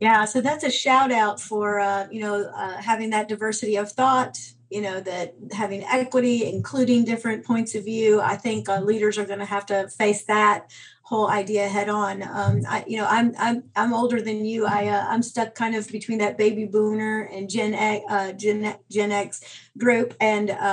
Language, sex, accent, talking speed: English, female, American, 200 wpm